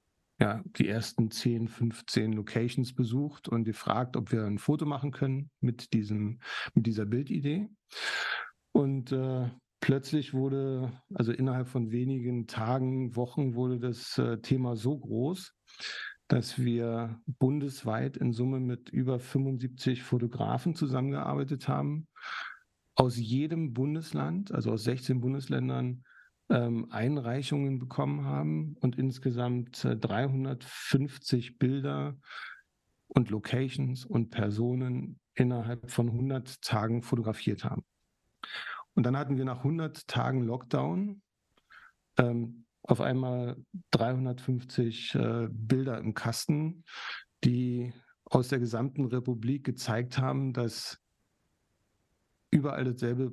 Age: 50-69